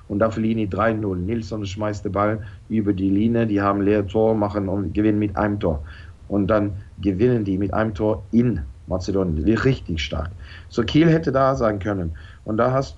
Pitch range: 100-130 Hz